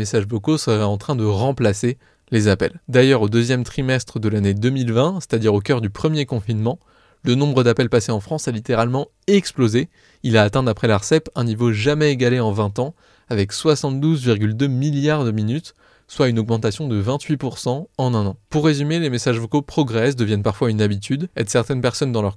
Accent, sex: French, male